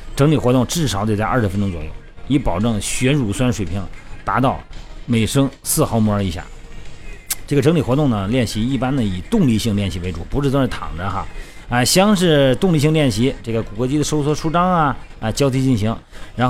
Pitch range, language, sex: 100-140 Hz, Chinese, male